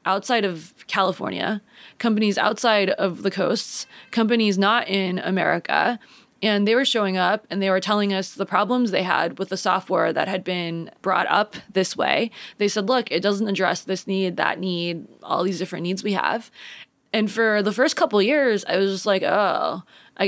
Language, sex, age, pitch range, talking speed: English, female, 20-39, 185-225 Hz, 190 wpm